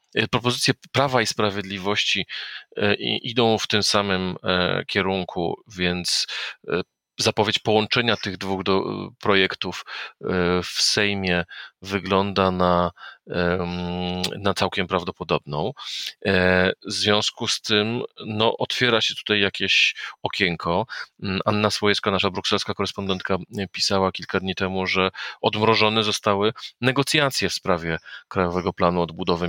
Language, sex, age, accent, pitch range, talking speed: Polish, male, 40-59, native, 90-105 Hz, 100 wpm